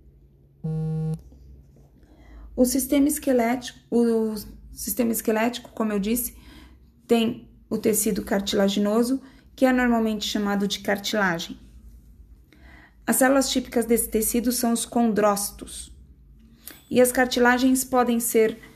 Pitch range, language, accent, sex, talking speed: 205-245 Hz, Portuguese, Brazilian, female, 95 wpm